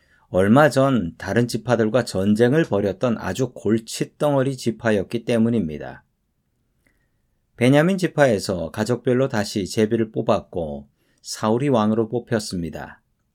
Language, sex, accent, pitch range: Korean, male, native, 110-140 Hz